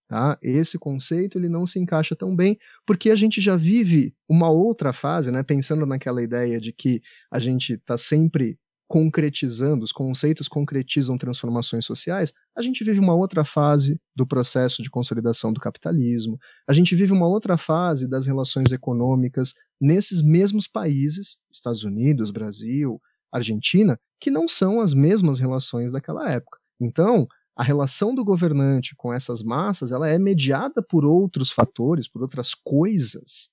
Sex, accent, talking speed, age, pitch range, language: male, Brazilian, 150 wpm, 30-49, 125-165 Hz, Portuguese